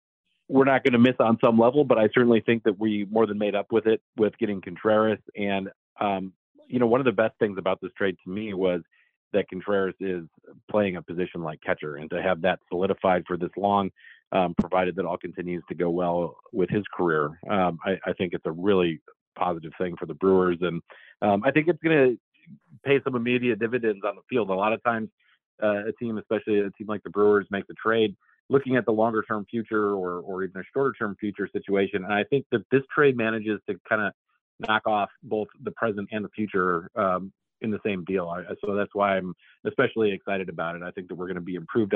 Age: 40-59